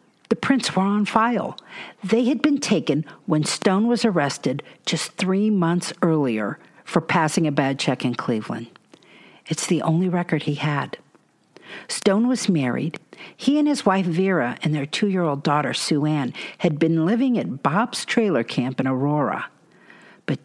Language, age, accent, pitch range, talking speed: English, 50-69, American, 145-205 Hz, 160 wpm